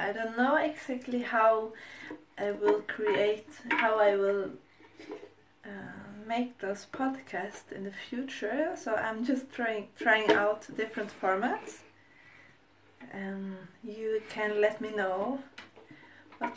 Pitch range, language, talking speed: 200-265 Hz, English, 125 wpm